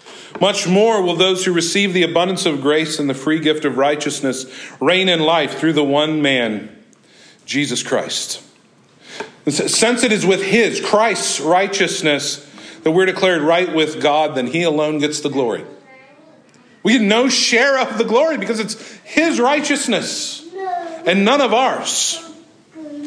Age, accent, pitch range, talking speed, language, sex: 40-59, American, 160-225 Hz, 155 wpm, English, male